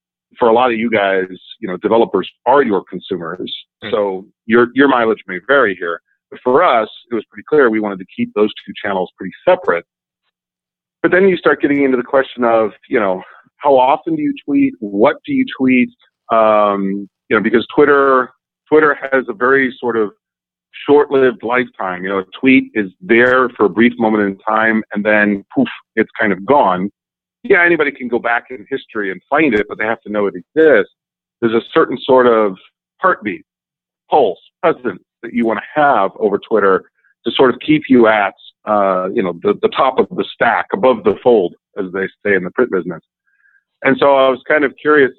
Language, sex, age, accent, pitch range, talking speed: English, male, 40-59, American, 105-135 Hz, 200 wpm